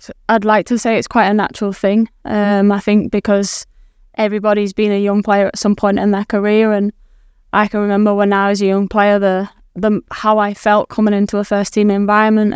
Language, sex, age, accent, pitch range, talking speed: English, female, 10-29, British, 200-215 Hz, 215 wpm